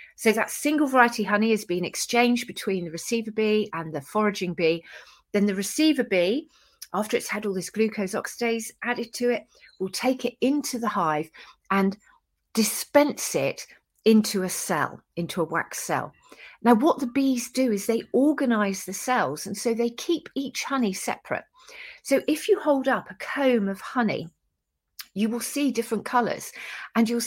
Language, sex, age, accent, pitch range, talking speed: English, female, 40-59, British, 185-245 Hz, 175 wpm